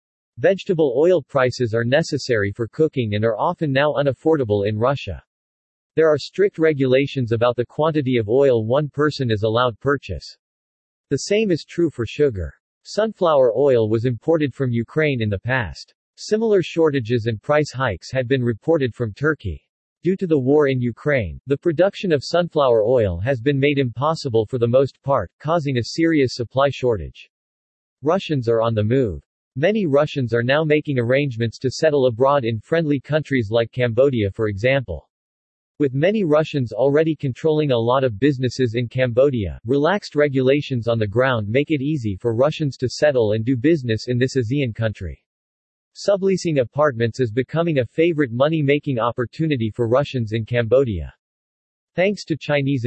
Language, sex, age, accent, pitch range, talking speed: English, male, 50-69, American, 115-150 Hz, 165 wpm